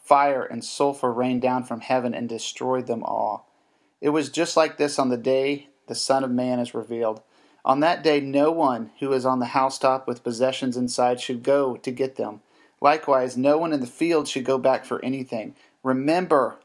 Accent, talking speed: American, 200 wpm